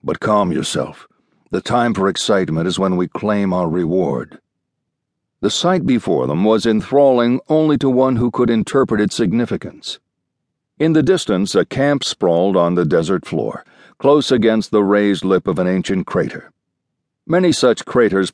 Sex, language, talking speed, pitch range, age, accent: male, English, 160 wpm, 105-140 Hz, 60-79, American